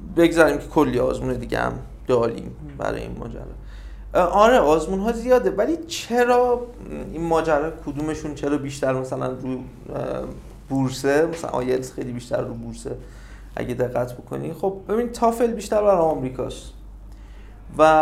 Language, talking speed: Persian, 130 wpm